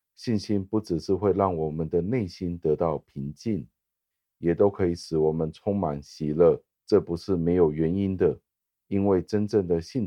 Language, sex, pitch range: Chinese, male, 75-100 Hz